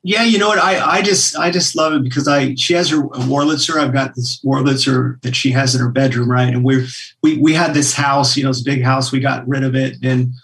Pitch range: 125-140 Hz